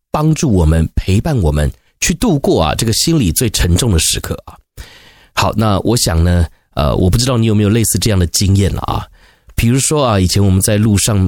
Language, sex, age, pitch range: Chinese, male, 30-49, 90-115 Hz